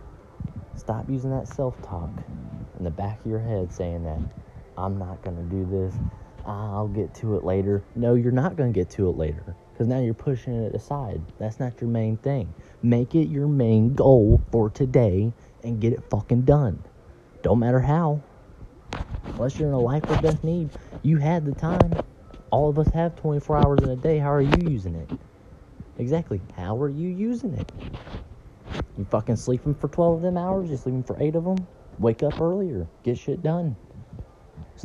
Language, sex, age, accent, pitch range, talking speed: English, male, 20-39, American, 95-145 Hz, 190 wpm